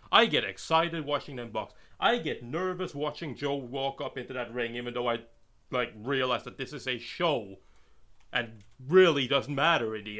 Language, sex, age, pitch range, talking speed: English, male, 30-49, 115-150 Hz, 190 wpm